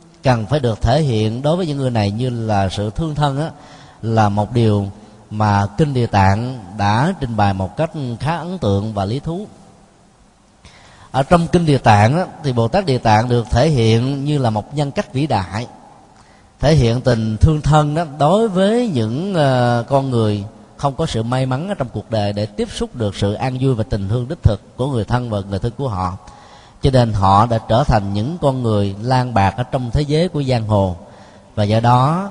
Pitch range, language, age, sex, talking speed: 105-140 Hz, Vietnamese, 20-39, male, 215 wpm